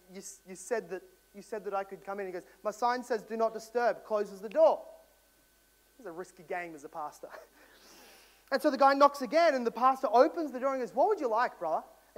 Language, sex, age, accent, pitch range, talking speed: English, male, 30-49, Australian, 215-290 Hz, 240 wpm